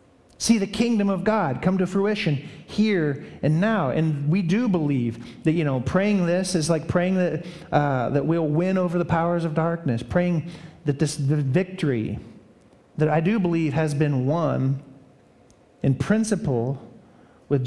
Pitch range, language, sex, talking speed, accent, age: 130-165 Hz, Russian, male, 165 wpm, American, 40-59